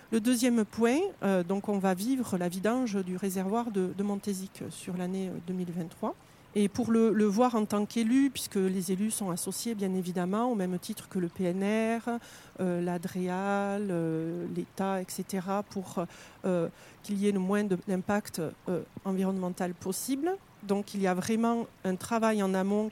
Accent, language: French, French